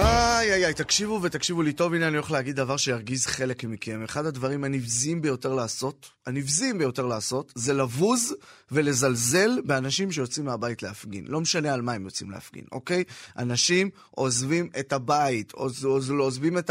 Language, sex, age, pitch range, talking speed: Hebrew, male, 20-39, 150-240 Hz, 160 wpm